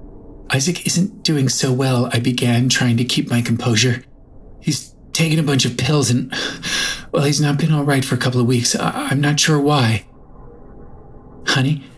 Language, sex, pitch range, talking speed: English, male, 110-150 Hz, 175 wpm